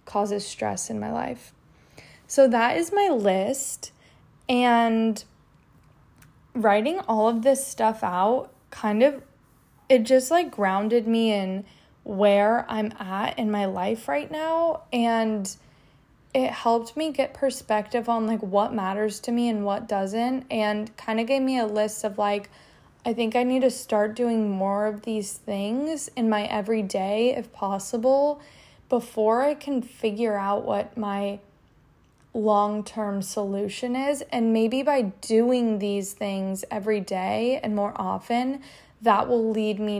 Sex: female